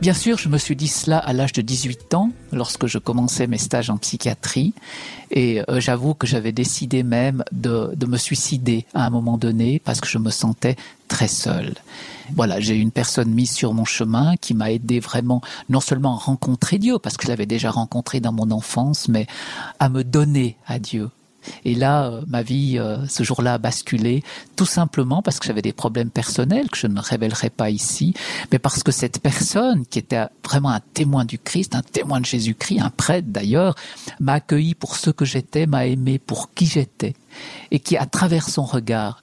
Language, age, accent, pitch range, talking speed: French, 50-69, French, 120-145 Hz, 200 wpm